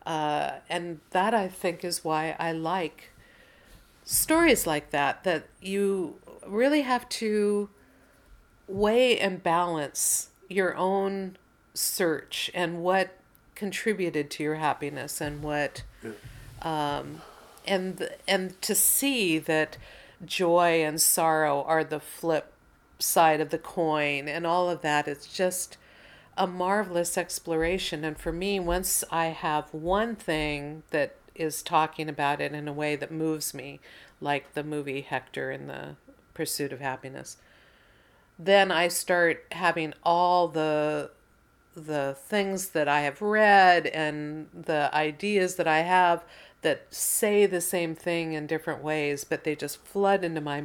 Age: 50-69